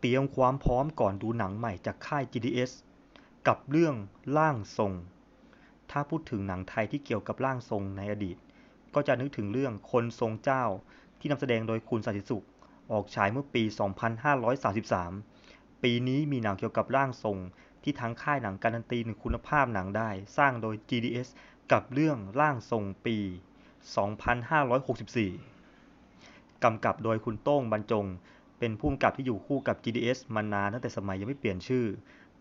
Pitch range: 100-130 Hz